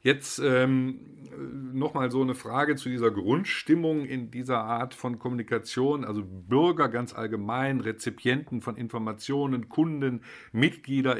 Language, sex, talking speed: German, male, 125 wpm